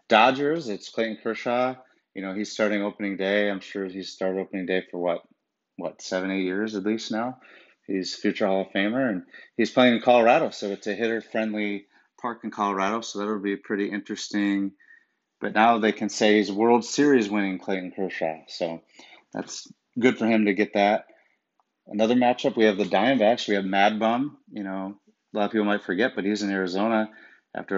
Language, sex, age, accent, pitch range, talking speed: English, male, 30-49, American, 95-110 Hz, 190 wpm